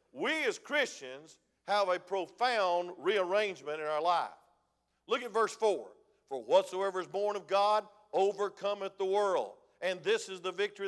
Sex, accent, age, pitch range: male, American, 50-69, 180-255 Hz